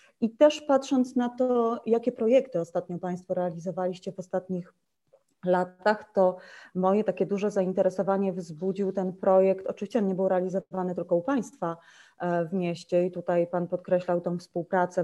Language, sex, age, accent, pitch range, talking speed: Polish, female, 30-49, native, 180-225 Hz, 150 wpm